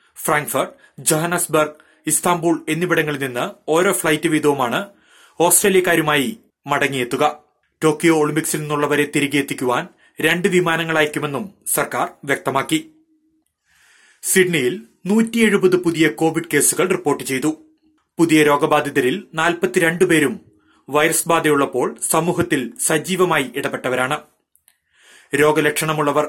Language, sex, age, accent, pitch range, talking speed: Malayalam, male, 30-49, native, 150-185 Hz, 75 wpm